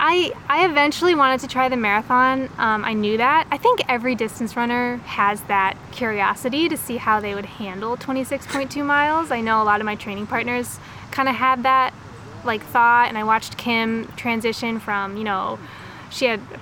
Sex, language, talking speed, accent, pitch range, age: female, English, 190 wpm, American, 210-255 Hz, 20-39